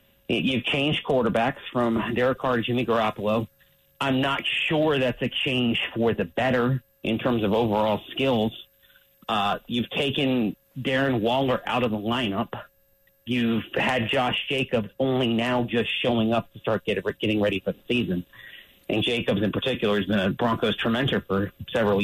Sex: male